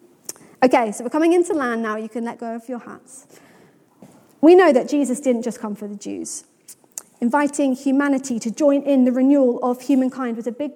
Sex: female